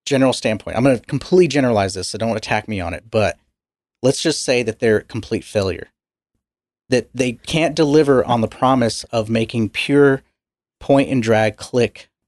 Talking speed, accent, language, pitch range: 165 wpm, American, English, 105-130 Hz